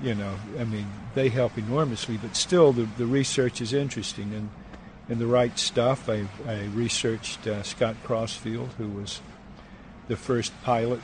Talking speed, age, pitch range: 165 wpm, 50-69, 105-125 Hz